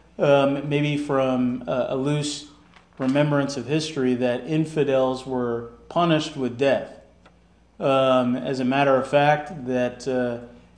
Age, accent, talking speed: 40-59, American, 120 wpm